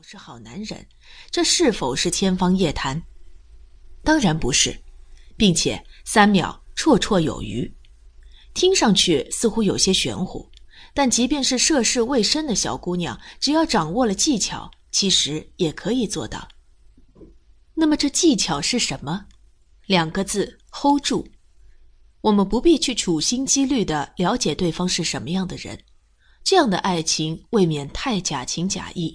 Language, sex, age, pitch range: English, female, 20-39, 165-240 Hz